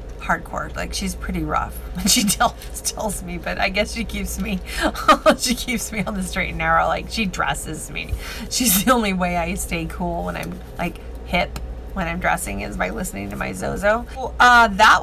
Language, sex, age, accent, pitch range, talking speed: English, female, 30-49, American, 175-235 Hz, 205 wpm